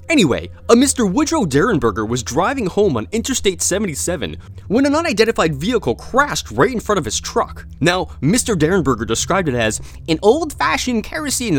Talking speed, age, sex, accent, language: 160 wpm, 30-49, male, American, English